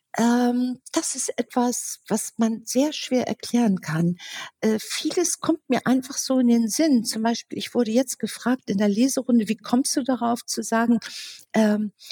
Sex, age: female, 50-69